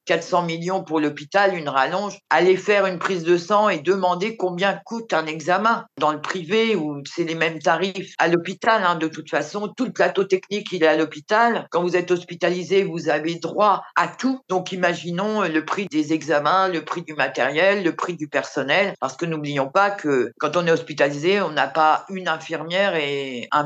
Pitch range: 150-185 Hz